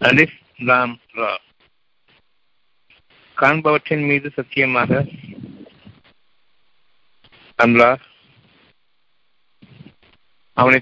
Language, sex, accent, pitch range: Tamil, male, native, 115-135 Hz